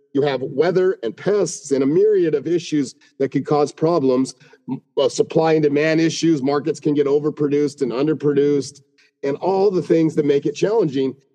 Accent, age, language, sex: American, 40-59, English, male